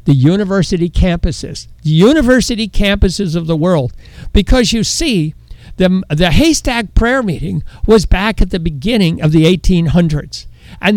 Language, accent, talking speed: English, American, 140 wpm